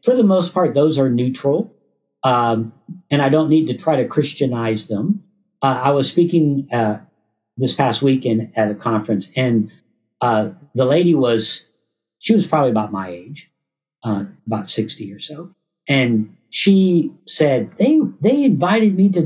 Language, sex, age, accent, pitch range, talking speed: English, male, 50-69, American, 120-165 Hz, 160 wpm